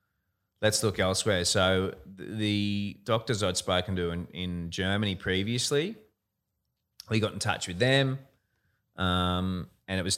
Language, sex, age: English, male, 20-39